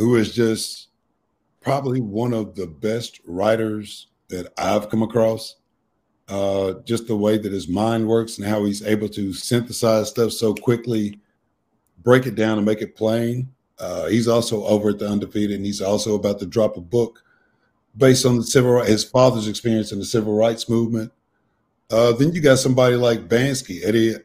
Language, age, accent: English, 50-69, American